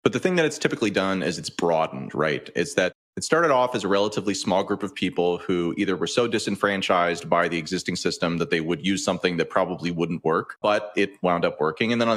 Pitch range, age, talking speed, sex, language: 90-110 Hz, 30-49, 240 wpm, male, English